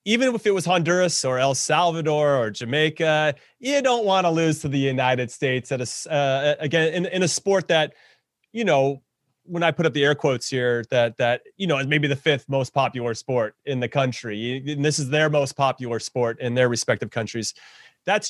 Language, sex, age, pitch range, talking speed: English, male, 30-49, 130-170 Hz, 210 wpm